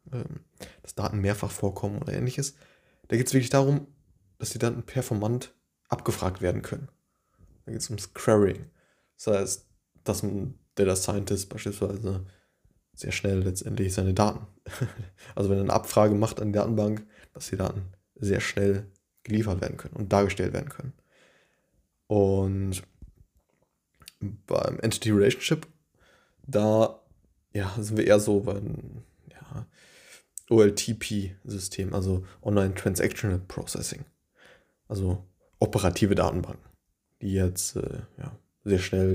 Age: 20-39